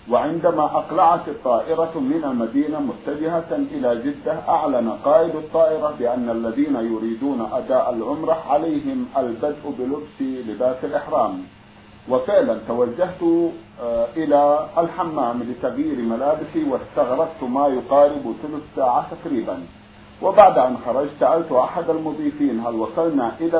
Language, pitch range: Arabic, 125-190 Hz